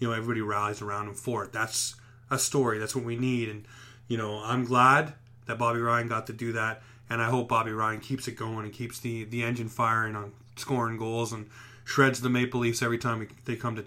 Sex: male